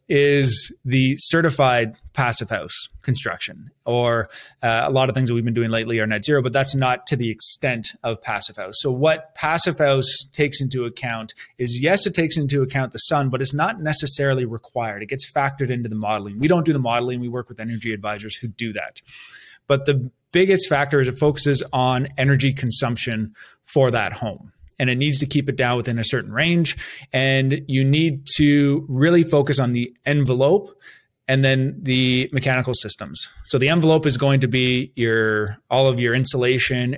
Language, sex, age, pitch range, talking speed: English, male, 20-39, 115-140 Hz, 190 wpm